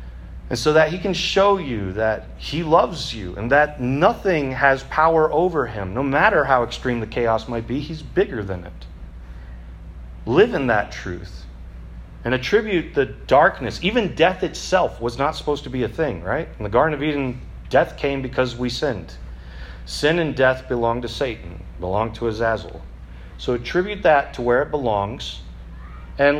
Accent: American